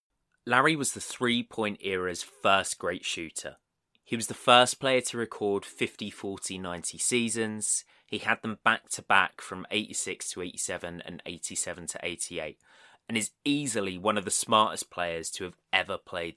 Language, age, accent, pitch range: English, 20-39, British, 90-115 Hz